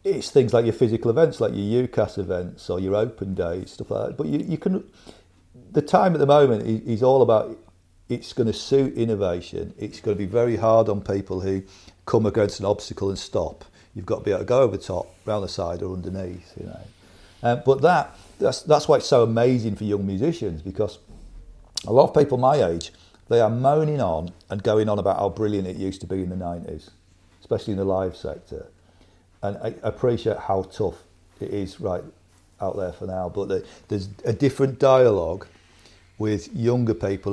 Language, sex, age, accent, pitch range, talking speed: English, male, 40-59, British, 95-115 Hz, 205 wpm